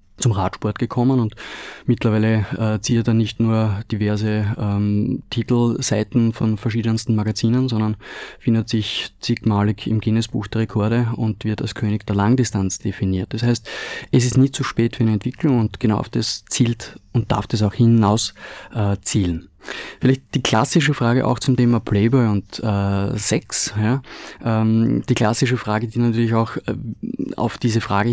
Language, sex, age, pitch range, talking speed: German, male, 20-39, 110-125 Hz, 165 wpm